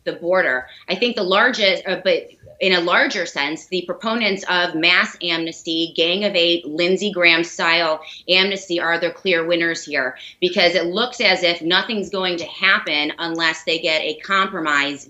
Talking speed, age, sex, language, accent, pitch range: 165 wpm, 30-49, female, English, American, 165-195 Hz